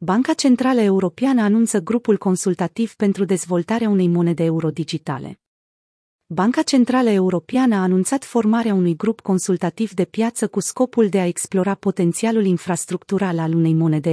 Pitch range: 175-220 Hz